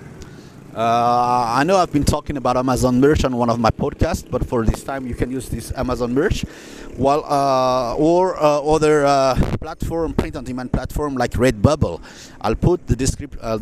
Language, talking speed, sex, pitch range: English, 175 wpm, male, 115-150 Hz